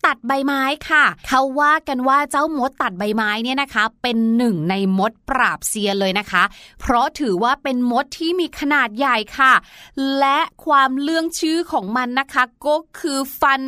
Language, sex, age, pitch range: Thai, female, 20-39, 245-315 Hz